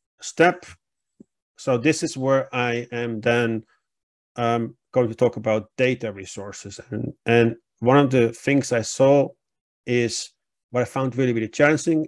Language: German